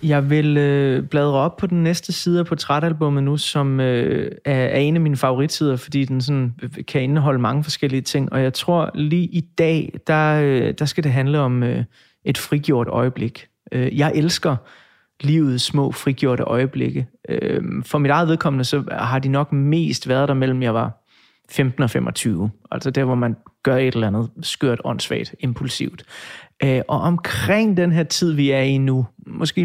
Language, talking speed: Danish, 185 wpm